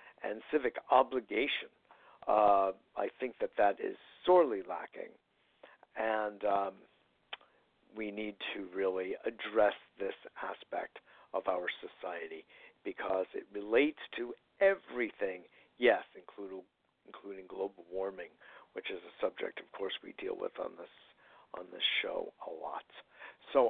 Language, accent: English, American